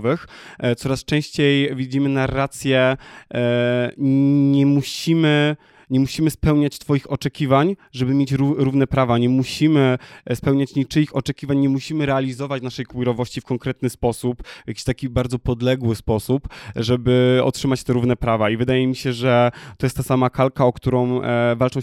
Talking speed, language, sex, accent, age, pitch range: 140 wpm, Polish, male, native, 20-39, 120-140 Hz